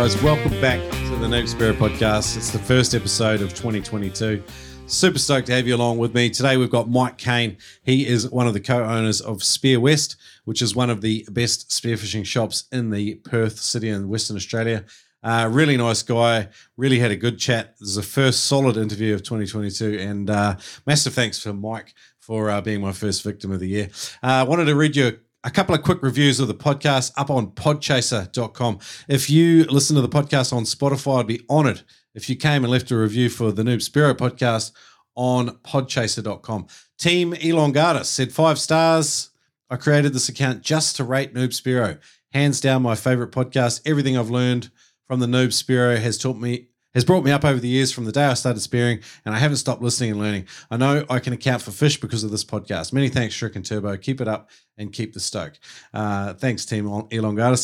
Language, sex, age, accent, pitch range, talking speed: English, male, 40-59, Australian, 110-135 Hz, 210 wpm